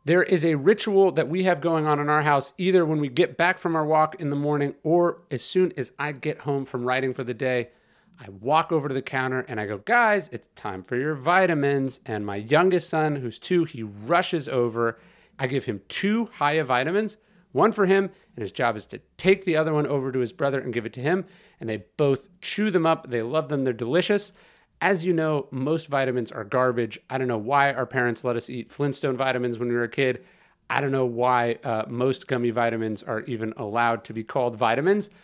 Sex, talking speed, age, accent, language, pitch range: male, 230 wpm, 40-59, American, English, 130-175 Hz